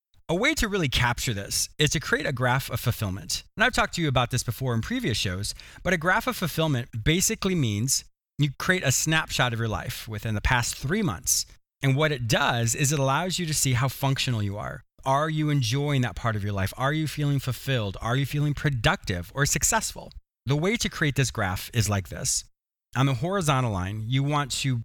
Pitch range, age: 115-150 Hz, 30-49